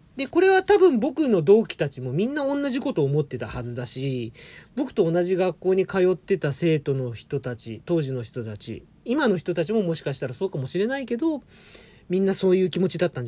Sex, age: male, 40-59